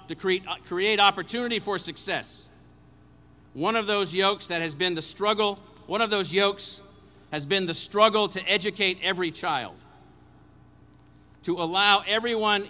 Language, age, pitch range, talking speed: English, 50-69, 130-200 Hz, 135 wpm